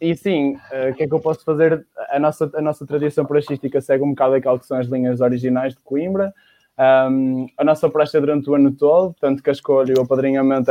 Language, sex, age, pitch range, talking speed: Portuguese, male, 20-39, 130-155 Hz, 240 wpm